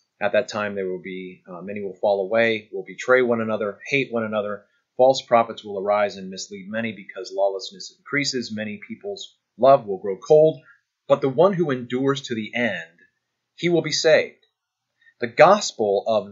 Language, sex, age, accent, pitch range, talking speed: English, male, 30-49, American, 110-155 Hz, 180 wpm